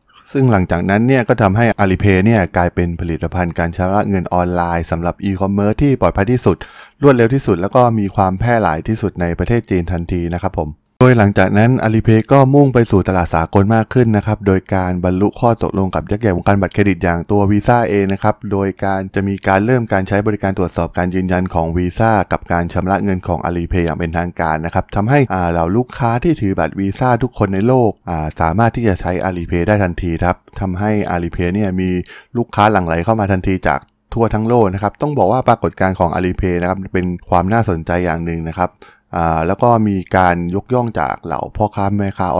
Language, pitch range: Thai, 90-110 Hz